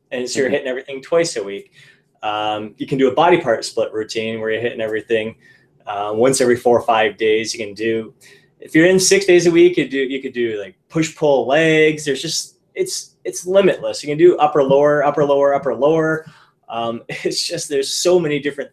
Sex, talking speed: male, 215 wpm